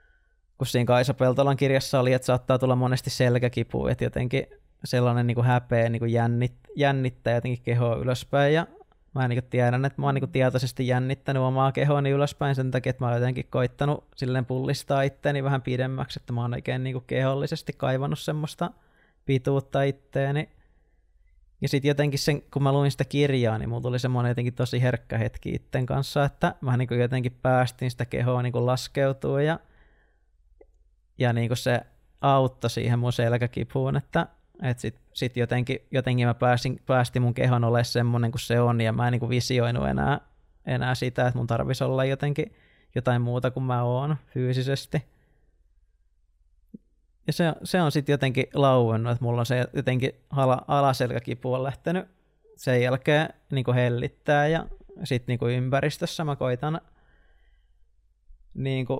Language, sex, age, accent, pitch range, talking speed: Finnish, male, 20-39, native, 120-140 Hz, 155 wpm